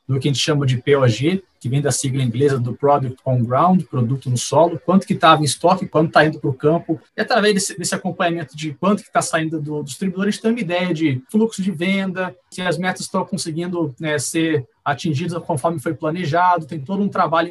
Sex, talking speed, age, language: male, 230 wpm, 20-39, Portuguese